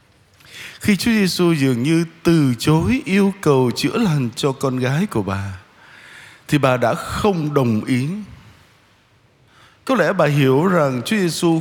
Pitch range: 115-170 Hz